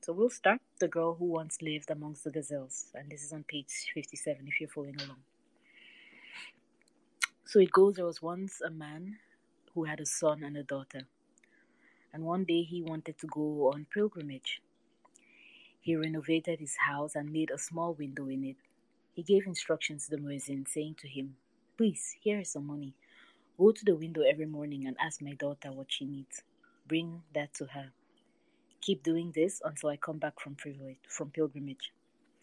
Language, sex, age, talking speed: English, female, 20-39, 180 wpm